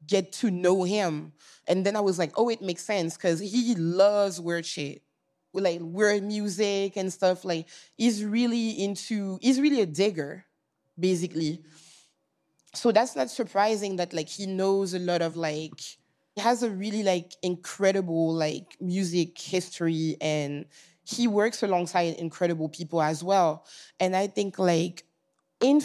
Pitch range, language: 180-215 Hz, English